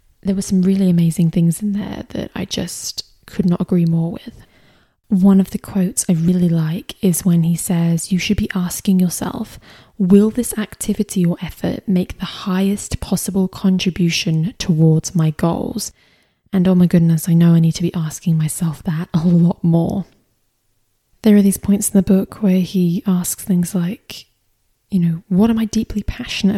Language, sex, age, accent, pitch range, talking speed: English, female, 20-39, British, 170-205 Hz, 180 wpm